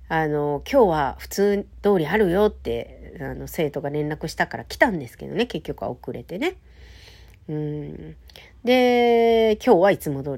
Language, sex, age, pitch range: Japanese, female, 50-69, 140-215 Hz